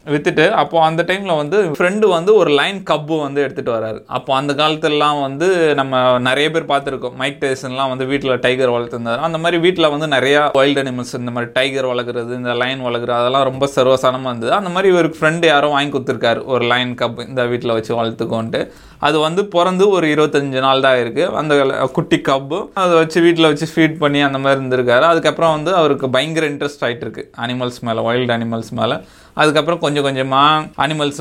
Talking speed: 185 wpm